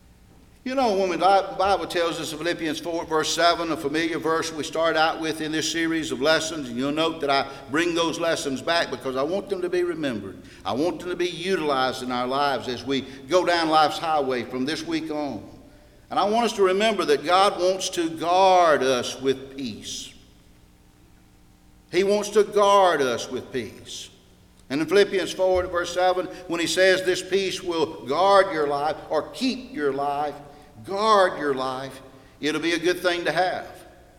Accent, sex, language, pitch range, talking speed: American, male, English, 150-205 Hz, 190 wpm